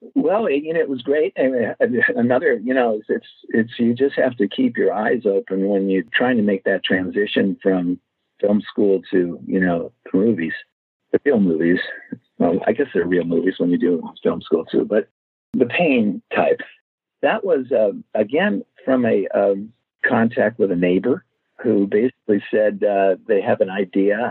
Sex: male